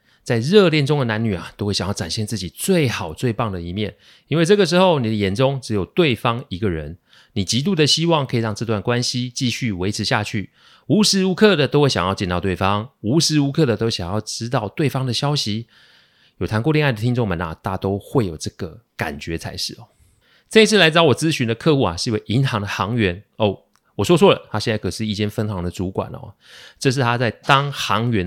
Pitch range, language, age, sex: 100-135 Hz, Chinese, 30-49, male